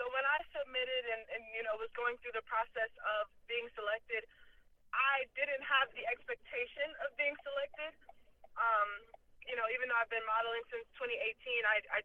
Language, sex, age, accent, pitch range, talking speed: English, female, 20-39, American, 220-295 Hz, 180 wpm